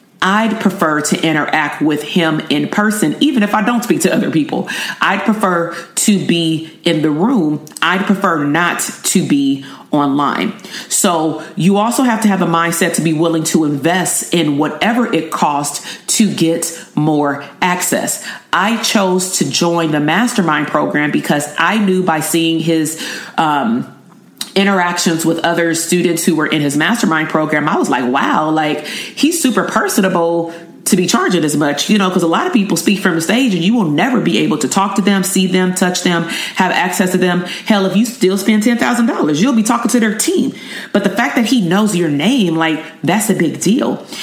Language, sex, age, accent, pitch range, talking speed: English, female, 40-59, American, 160-210 Hz, 195 wpm